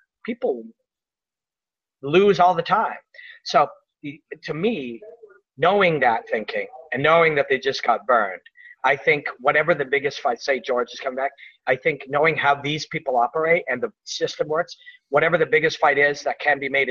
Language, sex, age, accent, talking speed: English, male, 40-59, American, 175 wpm